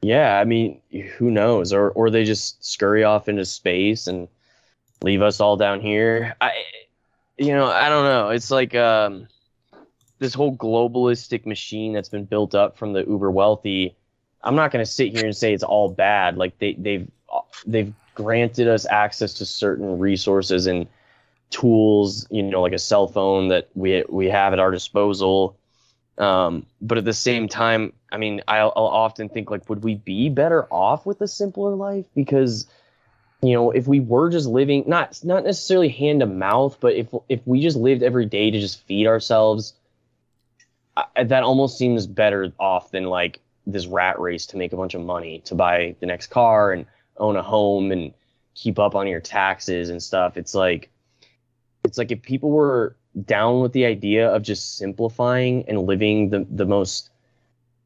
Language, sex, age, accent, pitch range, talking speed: English, male, 10-29, American, 100-125 Hz, 185 wpm